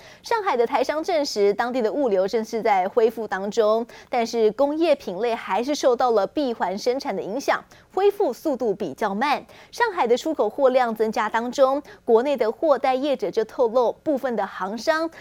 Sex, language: female, Chinese